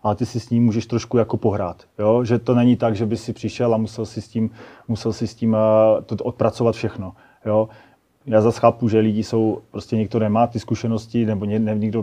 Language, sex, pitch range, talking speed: Slovak, male, 105-115 Hz, 225 wpm